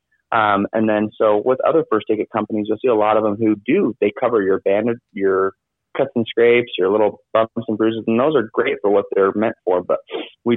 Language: English